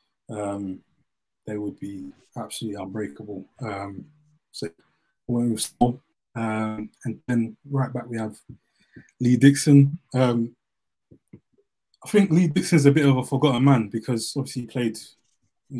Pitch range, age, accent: 110-135 Hz, 20-39, British